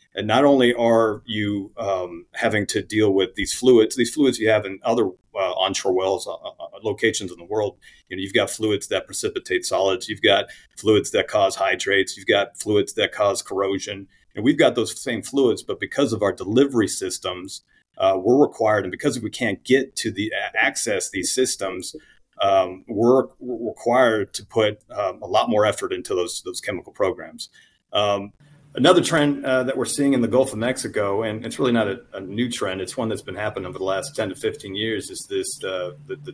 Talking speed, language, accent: 205 wpm, English, American